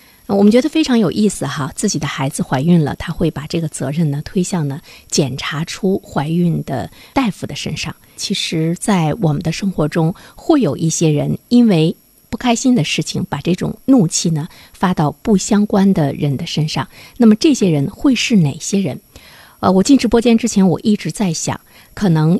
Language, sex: Chinese, female